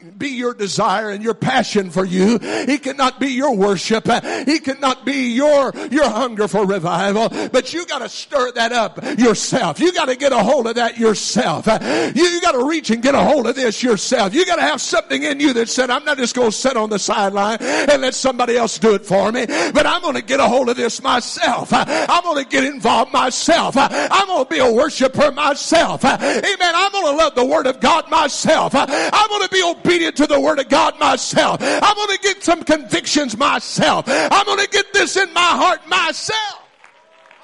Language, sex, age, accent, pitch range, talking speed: English, male, 50-69, American, 220-315 Hz, 220 wpm